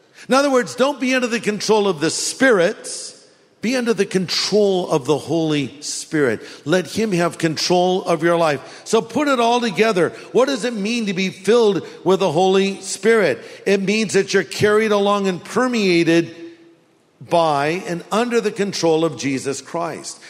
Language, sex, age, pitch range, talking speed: English, male, 50-69, 145-210 Hz, 170 wpm